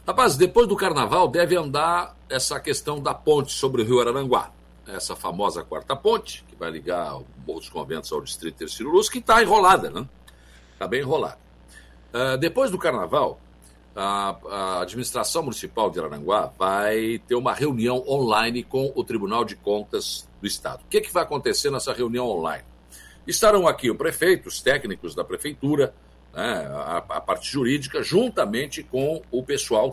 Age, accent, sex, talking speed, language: 60-79, Brazilian, male, 165 wpm, Portuguese